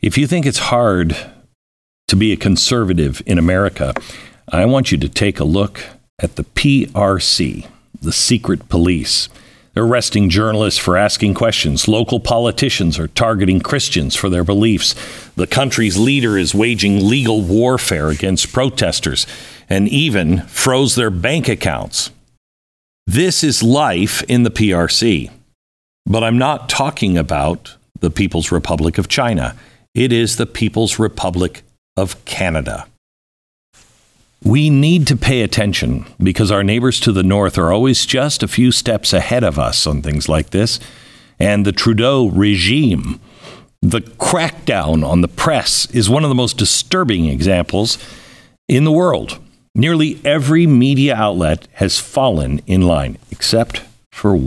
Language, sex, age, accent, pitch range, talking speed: English, male, 50-69, American, 90-125 Hz, 140 wpm